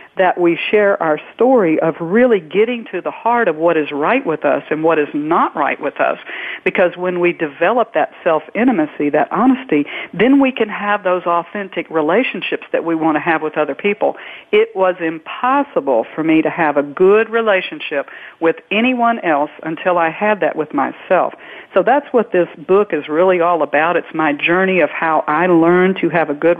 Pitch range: 160-210 Hz